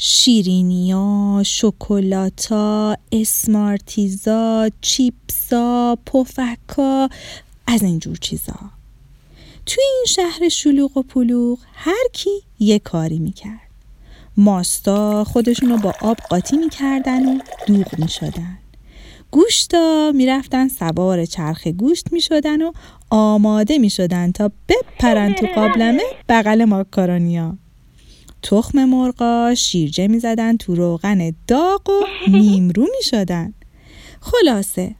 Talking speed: 90 wpm